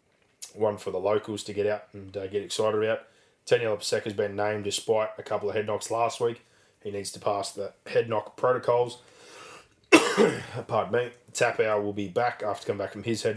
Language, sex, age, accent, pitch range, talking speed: English, male, 20-39, Australian, 100-110 Hz, 200 wpm